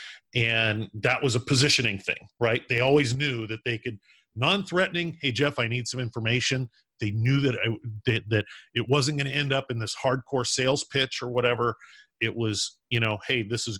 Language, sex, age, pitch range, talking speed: English, male, 40-59, 110-135 Hz, 195 wpm